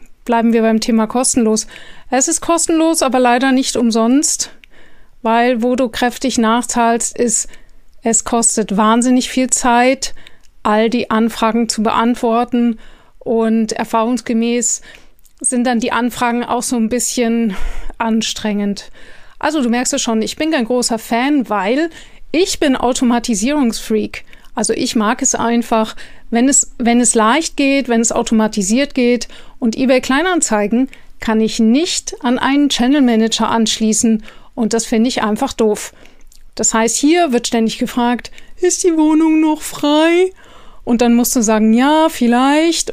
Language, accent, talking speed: German, German, 145 wpm